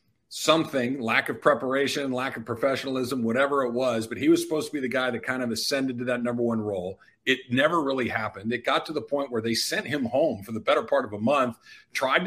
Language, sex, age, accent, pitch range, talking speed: English, male, 50-69, American, 120-160 Hz, 240 wpm